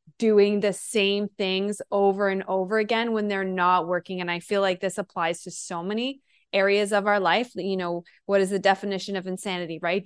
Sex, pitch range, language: female, 190-245 Hz, English